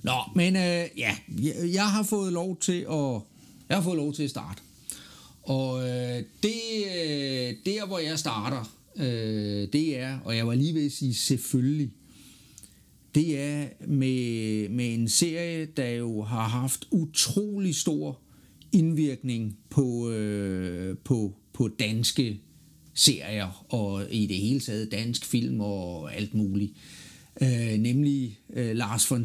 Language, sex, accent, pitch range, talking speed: Danish, male, native, 115-160 Hz, 145 wpm